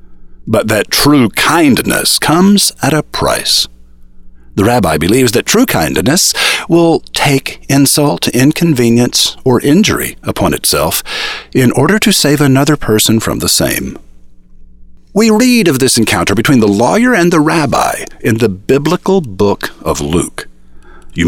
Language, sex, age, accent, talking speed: English, male, 50-69, American, 140 wpm